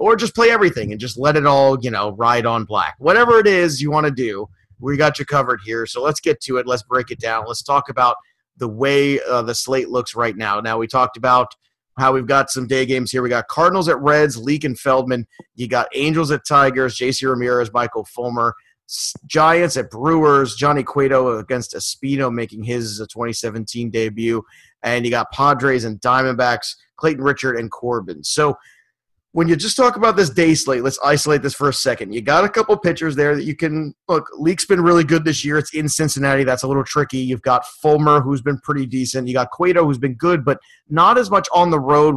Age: 30-49